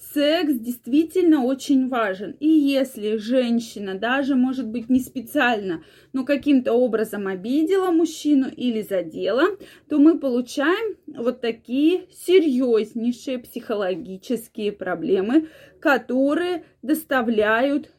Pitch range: 230-300 Hz